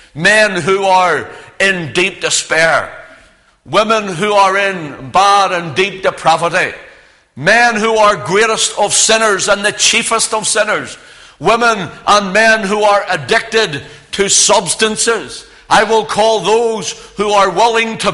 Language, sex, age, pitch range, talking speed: English, male, 60-79, 165-220 Hz, 135 wpm